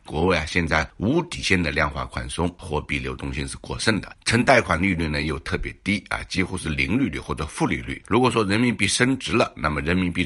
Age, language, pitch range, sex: 60-79, Chinese, 75-90 Hz, male